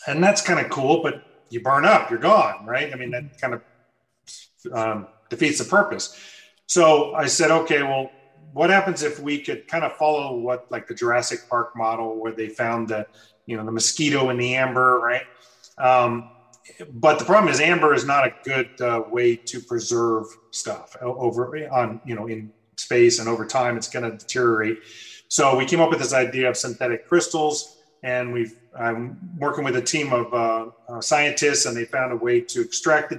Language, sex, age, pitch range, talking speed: English, male, 30-49, 120-155 Hz, 195 wpm